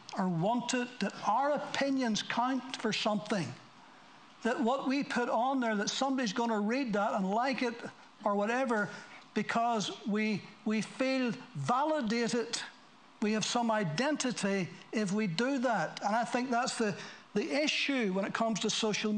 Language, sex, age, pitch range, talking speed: English, male, 60-79, 195-240 Hz, 160 wpm